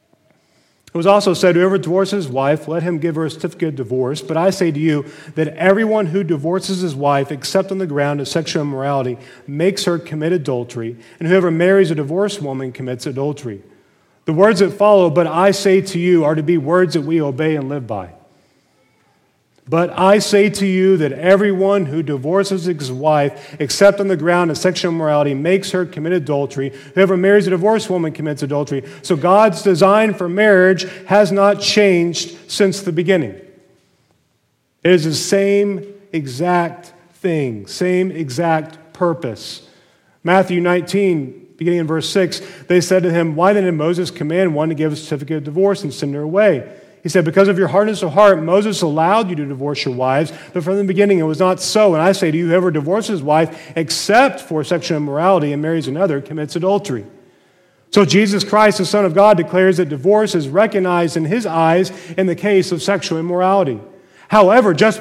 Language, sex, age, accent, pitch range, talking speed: English, male, 40-59, American, 155-195 Hz, 190 wpm